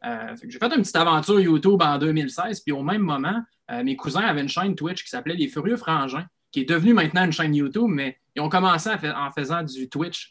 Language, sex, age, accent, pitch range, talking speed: French, male, 20-39, Canadian, 140-200 Hz, 245 wpm